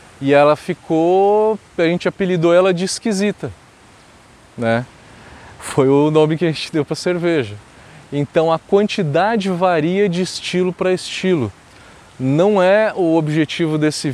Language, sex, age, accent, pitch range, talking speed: Portuguese, male, 20-39, Brazilian, 130-160 Hz, 135 wpm